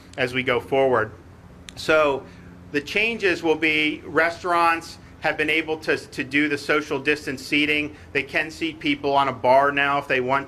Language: English